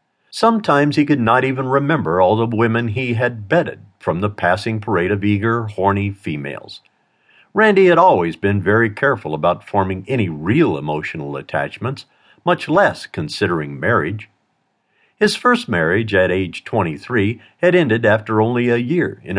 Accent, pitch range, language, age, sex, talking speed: American, 105-150 Hz, English, 50-69, male, 150 wpm